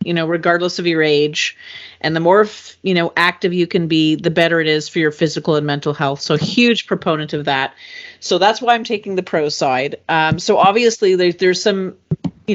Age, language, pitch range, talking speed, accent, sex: 40-59, English, 165-195 Hz, 220 wpm, American, female